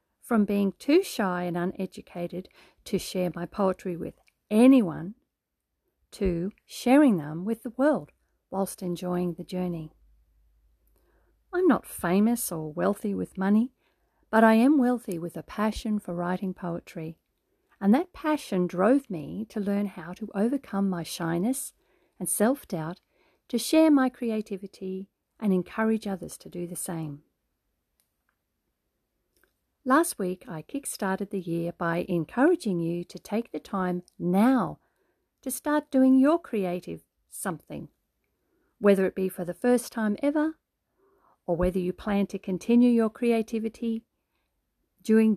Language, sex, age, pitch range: English, female, 50-69, 180-255 Hz